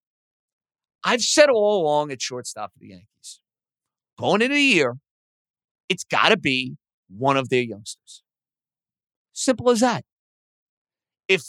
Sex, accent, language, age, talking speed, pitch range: male, American, English, 50-69, 130 wpm, 130-180 Hz